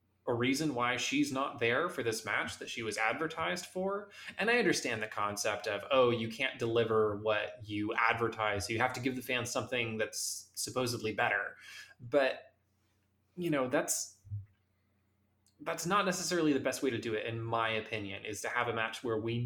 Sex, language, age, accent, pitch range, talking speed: male, English, 20-39, American, 105-135 Hz, 185 wpm